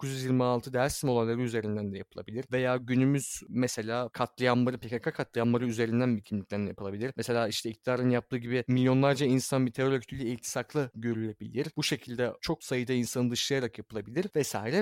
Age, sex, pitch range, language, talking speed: 30-49, male, 125-180 Hz, Turkish, 150 wpm